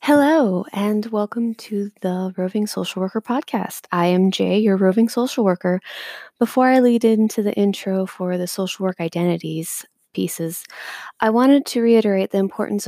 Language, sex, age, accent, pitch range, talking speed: English, female, 20-39, American, 180-220 Hz, 160 wpm